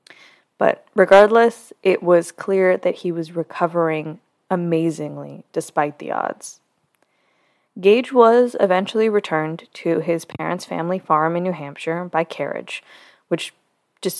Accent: American